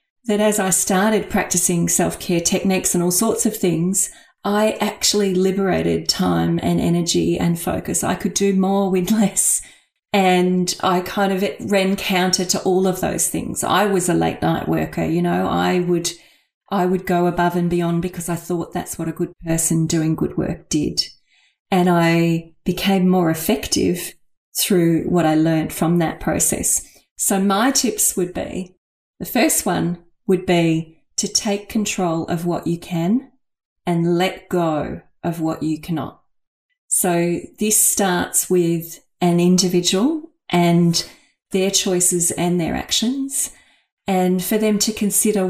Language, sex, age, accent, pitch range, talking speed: English, female, 40-59, Australian, 170-195 Hz, 155 wpm